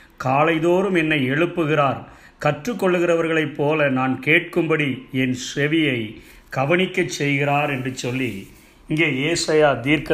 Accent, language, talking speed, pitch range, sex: native, Tamil, 95 wpm, 135-170 Hz, male